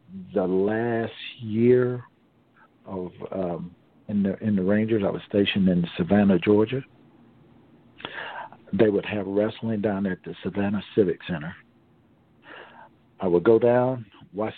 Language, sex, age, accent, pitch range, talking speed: English, male, 50-69, American, 95-110 Hz, 130 wpm